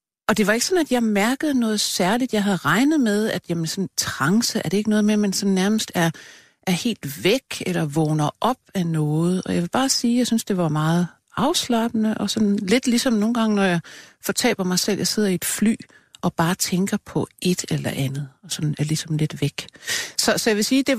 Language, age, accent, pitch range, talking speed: Danish, 60-79, native, 165-220 Hz, 225 wpm